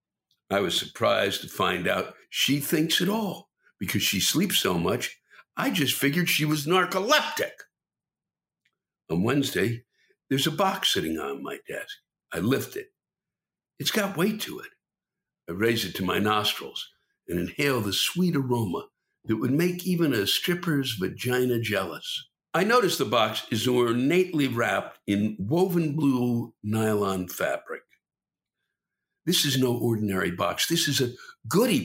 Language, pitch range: English, 115-170 Hz